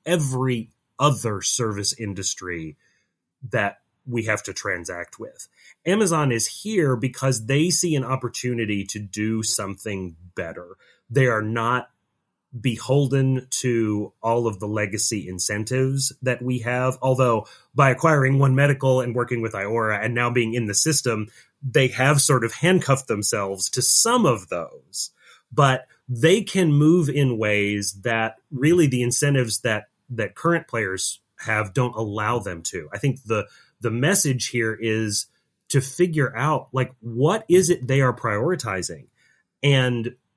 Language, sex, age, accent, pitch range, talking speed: English, male, 30-49, American, 110-145 Hz, 145 wpm